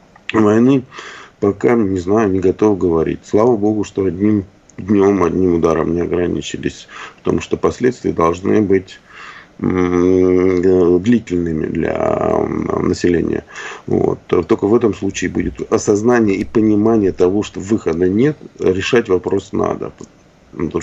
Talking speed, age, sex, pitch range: 125 wpm, 40-59, male, 90-110 Hz